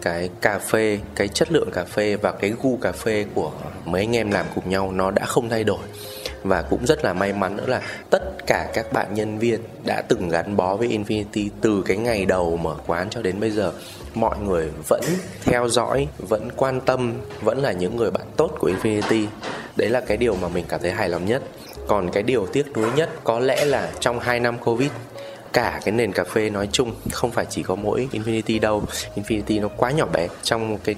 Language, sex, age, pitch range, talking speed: Vietnamese, male, 20-39, 95-120 Hz, 225 wpm